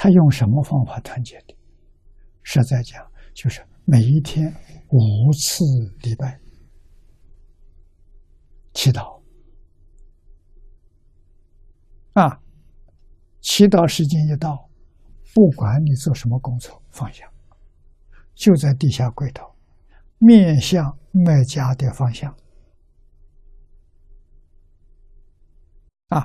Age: 60-79